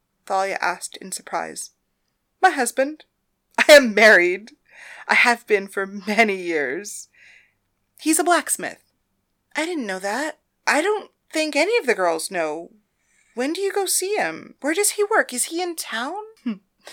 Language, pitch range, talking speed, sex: English, 195-260 Hz, 155 wpm, female